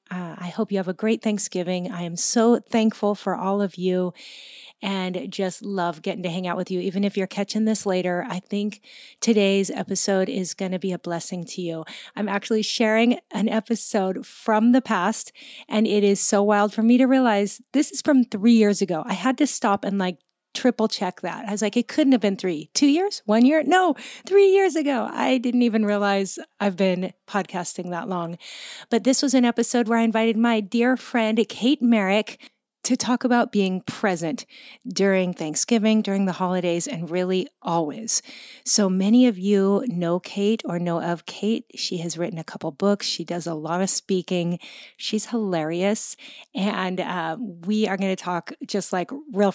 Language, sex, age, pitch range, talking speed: English, female, 30-49, 185-235 Hz, 195 wpm